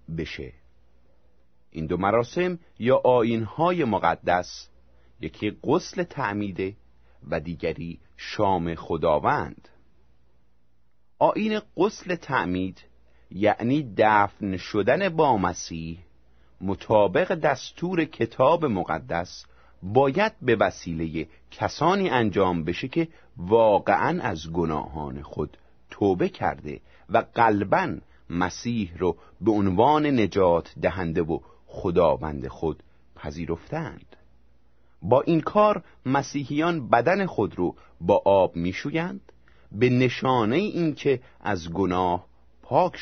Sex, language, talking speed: male, Persian, 95 wpm